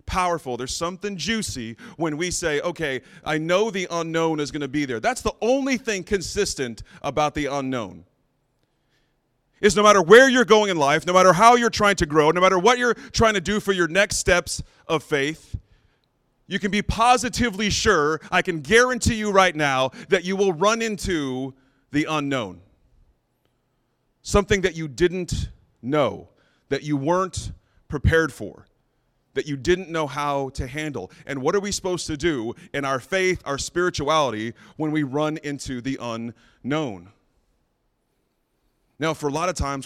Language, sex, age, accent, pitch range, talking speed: English, male, 30-49, American, 135-185 Hz, 170 wpm